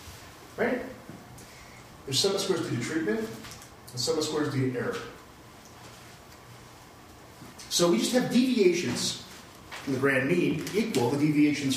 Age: 40-59